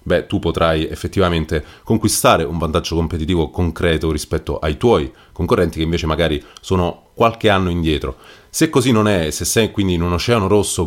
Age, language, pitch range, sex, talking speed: 30-49, Italian, 85-105 Hz, male, 170 wpm